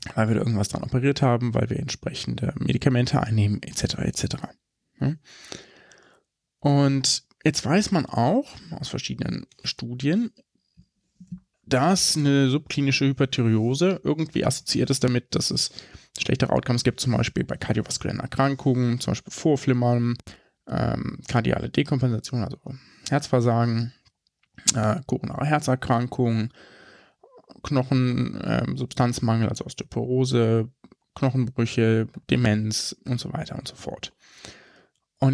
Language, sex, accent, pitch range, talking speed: German, male, German, 115-140 Hz, 105 wpm